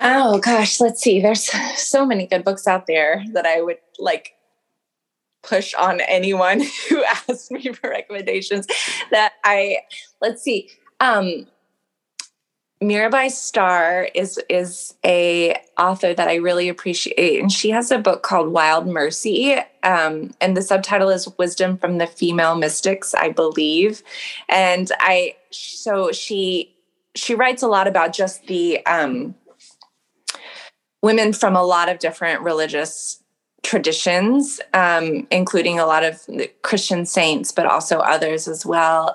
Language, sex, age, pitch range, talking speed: English, female, 20-39, 165-215 Hz, 140 wpm